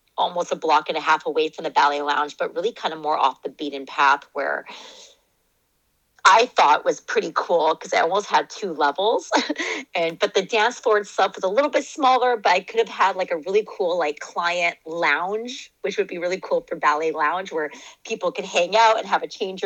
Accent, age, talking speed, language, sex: American, 30-49, 220 wpm, English, female